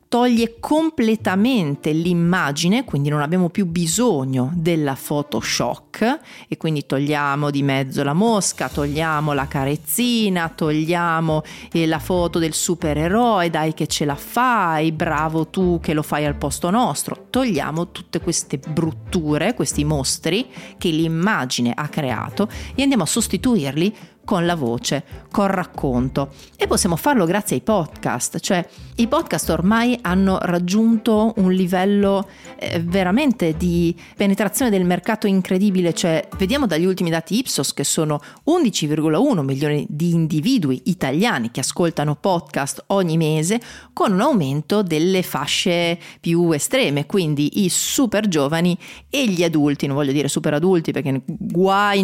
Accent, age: native, 40-59